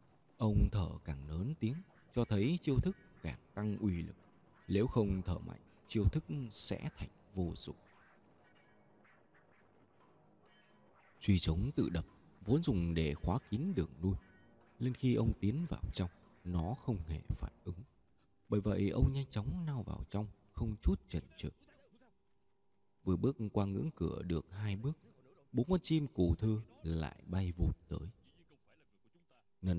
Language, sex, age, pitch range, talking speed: Vietnamese, male, 20-39, 90-120 Hz, 150 wpm